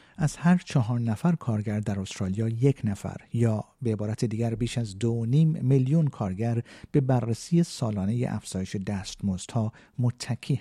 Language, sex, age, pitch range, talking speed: Persian, male, 50-69, 105-135 Hz, 145 wpm